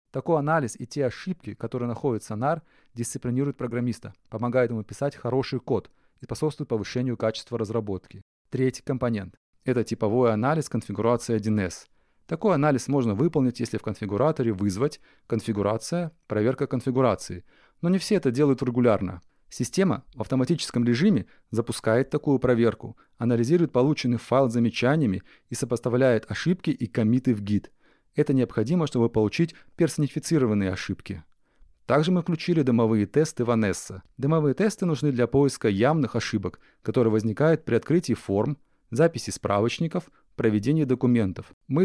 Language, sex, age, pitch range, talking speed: Russian, male, 30-49, 110-145 Hz, 135 wpm